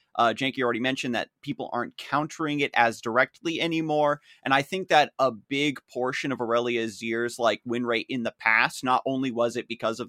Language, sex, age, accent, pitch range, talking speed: English, male, 30-49, American, 115-135 Hz, 200 wpm